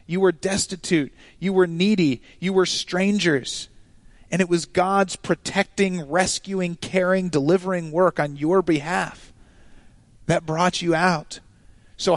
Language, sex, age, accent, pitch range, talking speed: English, male, 30-49, American, 145-190 Hz, 130 wpm